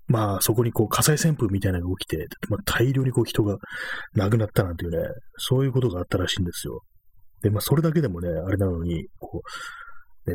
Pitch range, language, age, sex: 90-120 Hz, Japanese, 30-49, male